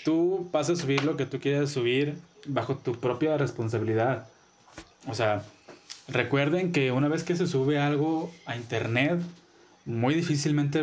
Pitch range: 120-145 Hz